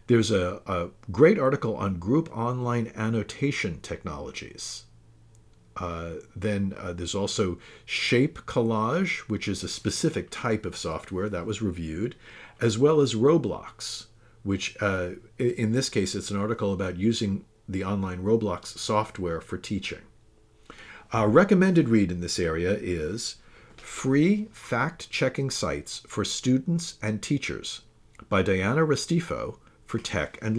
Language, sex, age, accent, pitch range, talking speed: English, male, 50-69, American, 95-125 Hz, 130 wpm